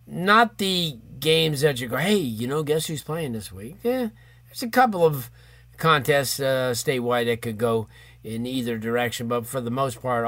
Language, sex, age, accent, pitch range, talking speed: English, male, 40-59, American, 115-135 Hz, 195 wpm